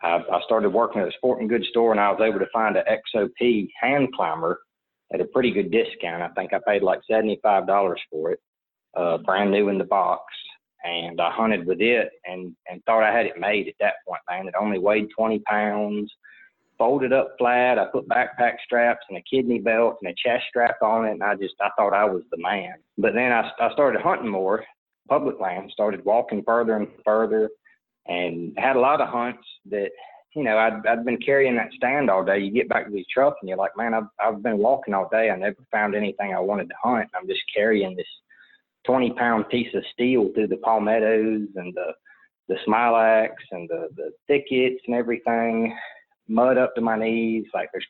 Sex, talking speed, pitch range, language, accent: male, 210 wpm, 105-130 Hz, English, American